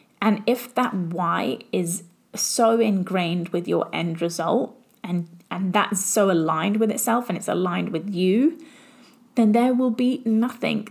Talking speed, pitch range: 155 wpm, 190-240 Hz